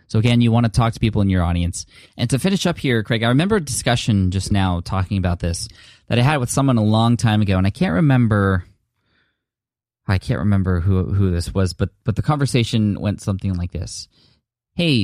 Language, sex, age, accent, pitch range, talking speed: English, male, 20-39, American, 90-115 Hz, 220 wpm